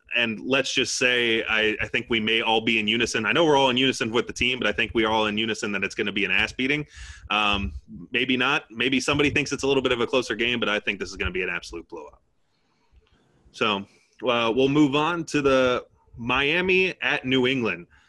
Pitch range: 110-140 Hz